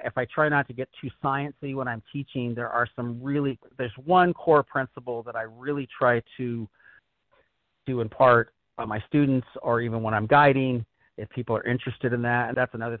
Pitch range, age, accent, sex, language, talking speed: 120-145 Hz, 40-59, American, male, English, 205 wpm